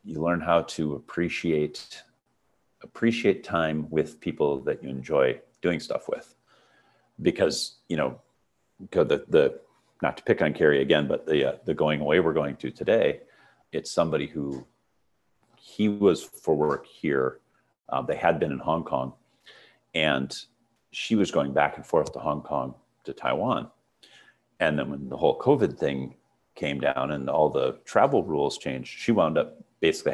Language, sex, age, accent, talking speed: English, male, 40-59, American, 165 wpm